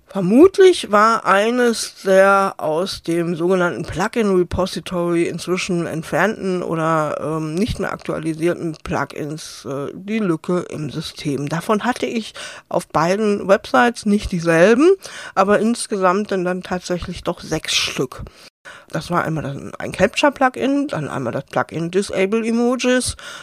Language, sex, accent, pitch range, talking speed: German, female, German, 165-210 Hz, 115 wpm